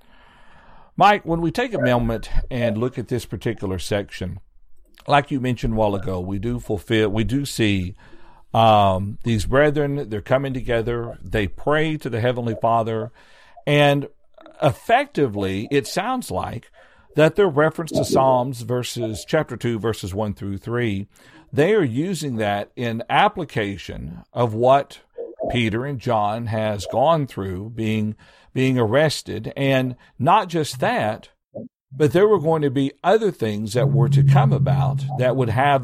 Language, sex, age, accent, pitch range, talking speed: English, male, 50-69, American, 105-145 Hz, 150 wpm